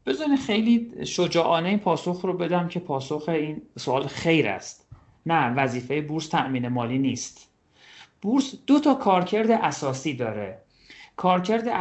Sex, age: male, 40-59